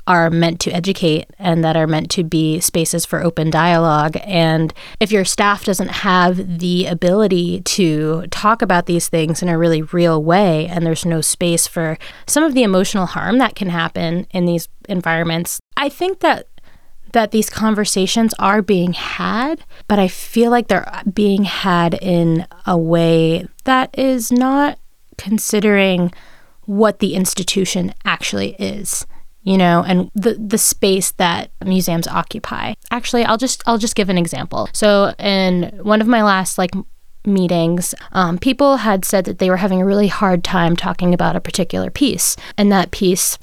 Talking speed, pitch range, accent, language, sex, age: 165 wpm, 170-205 Hz, American, English, female, 20-39